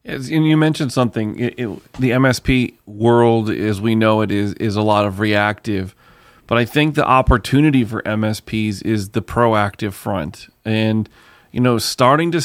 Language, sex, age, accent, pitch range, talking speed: English, male, 30-49, American, 110-130 Hz, 160 wpm